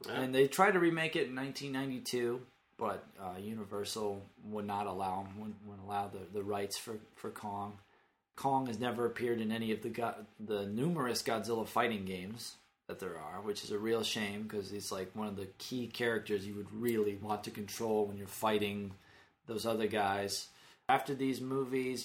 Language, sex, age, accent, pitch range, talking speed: English, male, 30-49, American, 105-130 Hz, 190 wpm